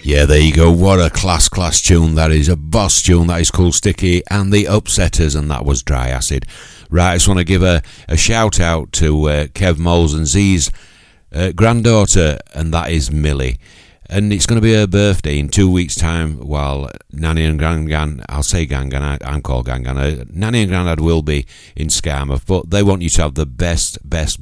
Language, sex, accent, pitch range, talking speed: English, male, British, 70-90 Hz, 210 wpm